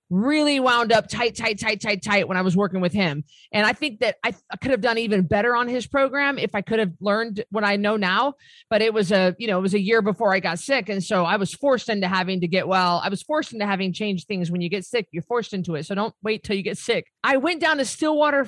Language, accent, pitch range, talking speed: English, American, 195-255 Hz, 285 wpm